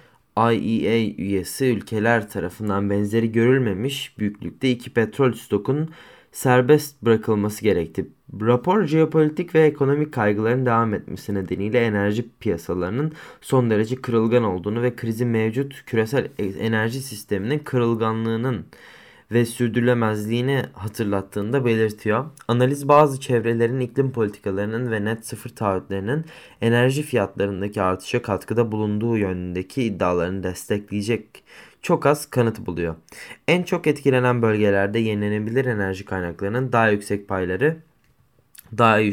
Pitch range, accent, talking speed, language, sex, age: 105-130 Hz, native, 105 wpm, Turkish, male, 20-39